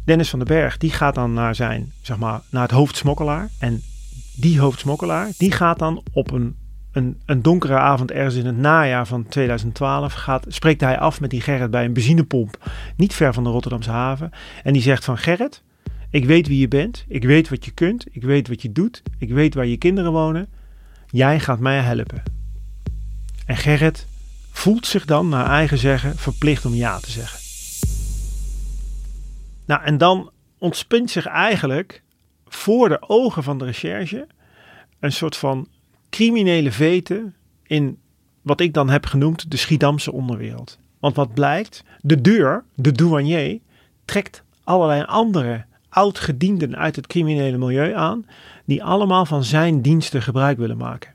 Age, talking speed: 40-59, 165 wpm